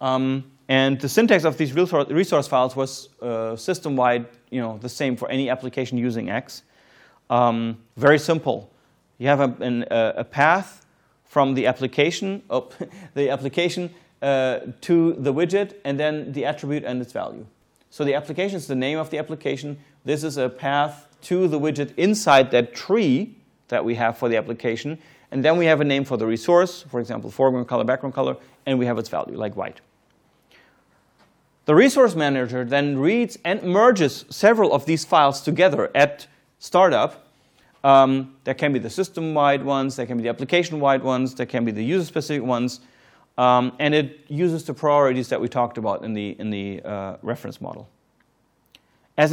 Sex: male